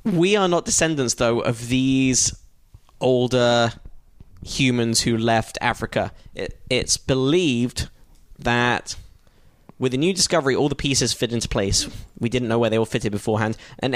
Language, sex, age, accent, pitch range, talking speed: English, male, 10-29, British, 115-145 Hz, 145 wpm